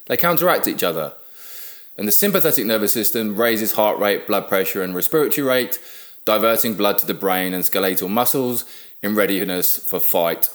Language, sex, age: English, male, 20-39